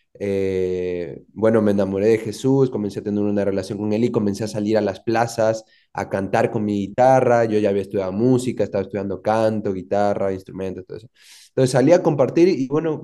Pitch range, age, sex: 100-120 Hz, 20-39, male